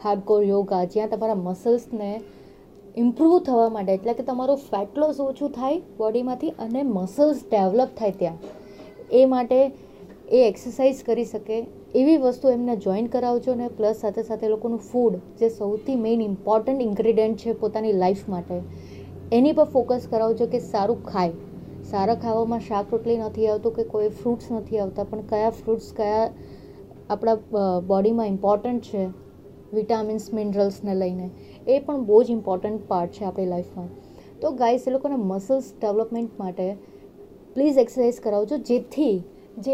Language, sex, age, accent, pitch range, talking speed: Gujarati, female, 30-49, native, 205-250 Hz, 150 wpm